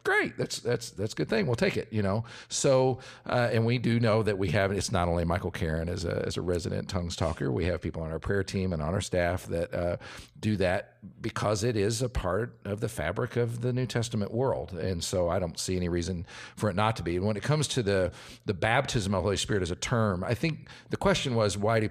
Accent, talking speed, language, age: American, 260 wpm, English, 50-69